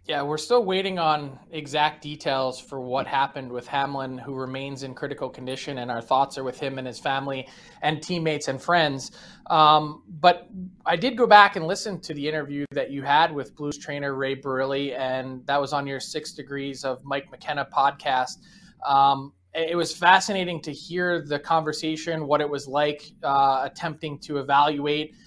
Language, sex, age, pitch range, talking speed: English, male, 20-39, 140-165 Hz, 180 wpm